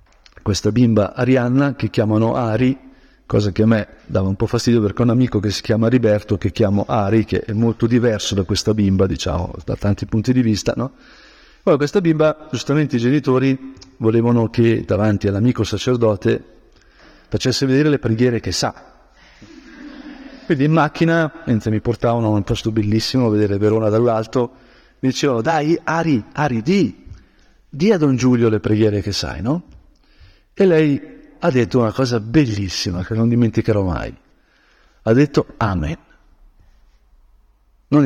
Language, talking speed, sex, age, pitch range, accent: Italian, 160 wpm, male, 50-69, 105-130 Hz, native